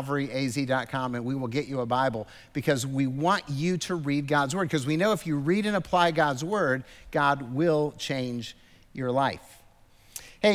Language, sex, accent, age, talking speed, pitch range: English, male, American, 50-69, 180 wpm, 145-195 Hz